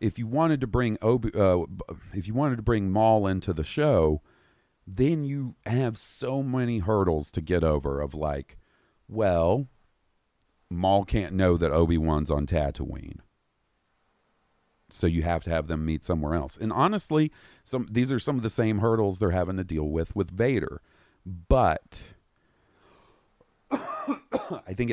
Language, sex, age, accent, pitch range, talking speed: English, male, 40-59, American, 80-110 Hz, 155 wpm